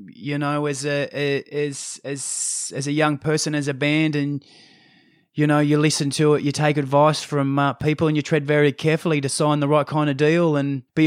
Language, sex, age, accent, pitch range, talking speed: English, male, 20-39, Australian, 135-150 Hz, 215 wpm